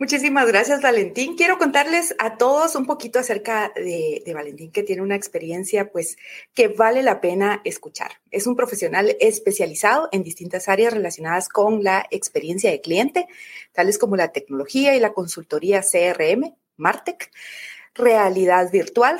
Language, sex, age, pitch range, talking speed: Spanish, female, 30-49, 190-285 Hz, 145 wpm